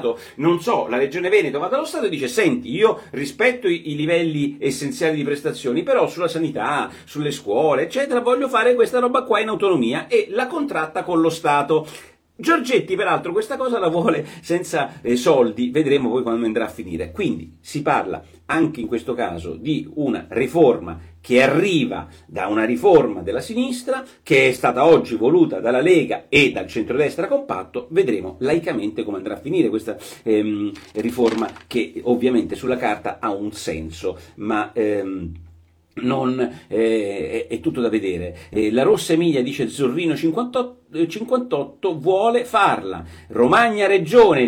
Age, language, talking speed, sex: 40-59, Italian, 155 wpm, male